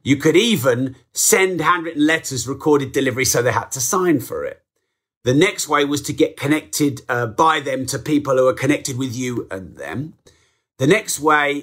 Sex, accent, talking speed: male, British, 190 wpm